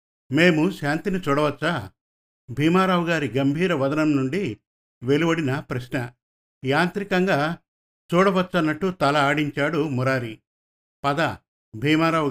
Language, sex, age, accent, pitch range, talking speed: Telugu, male, 50-69, native, 125-160 Hz, 85 wpm